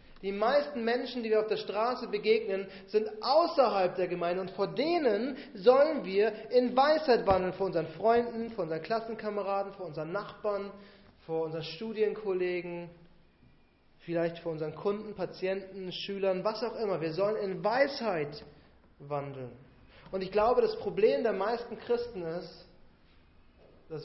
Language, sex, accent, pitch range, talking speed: German, male, German, 150-220 Hz, 140 wpm